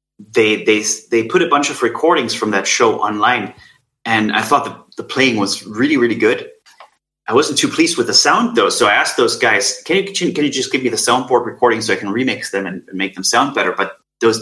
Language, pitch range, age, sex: English, 110-175 Hz, 30-49, male